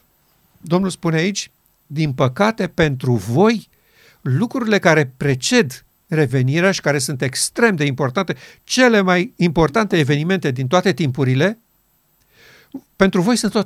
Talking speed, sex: 125 wpm, male